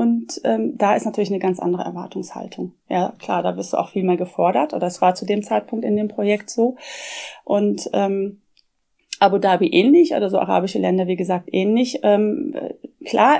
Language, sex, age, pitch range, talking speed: German, female, 30-49, 185-220 Hz, 190 wpm